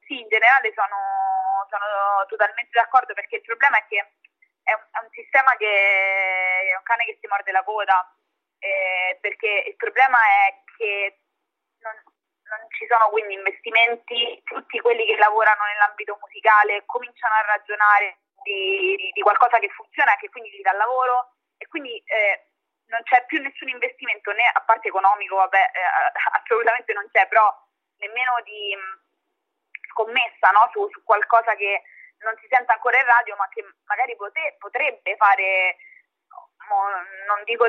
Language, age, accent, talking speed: Italian, 20-39, native, 160 wpm